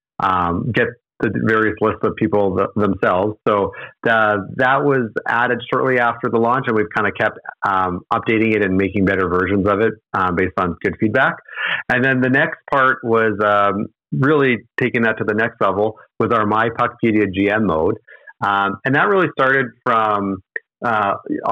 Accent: American